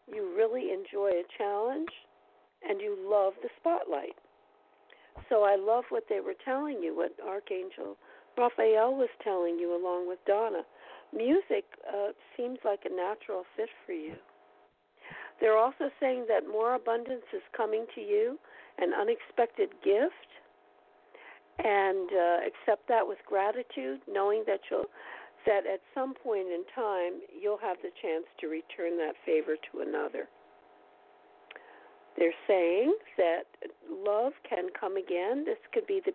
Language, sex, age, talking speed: English, female, 50-69, 140 wpm